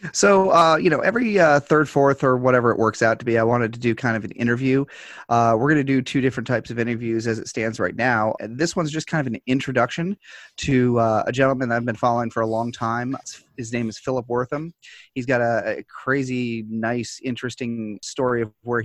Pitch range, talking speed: 110-130 Hz, 225 wpm